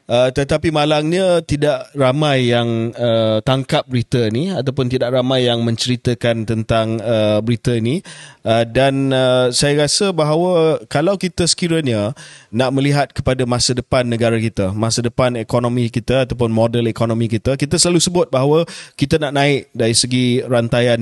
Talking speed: 150 wpm